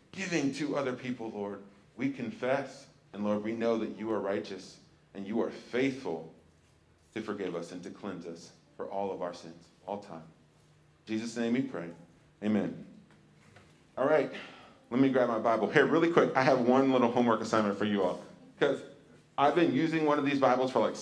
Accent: American